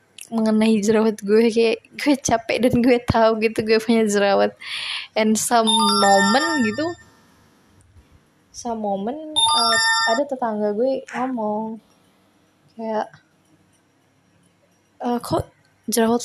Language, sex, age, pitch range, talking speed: Indonesian, female, 20-39, 220-260 Hz, 105 wpm